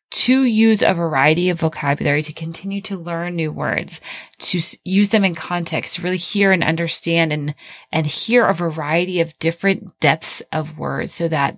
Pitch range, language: 155-195 Hz, English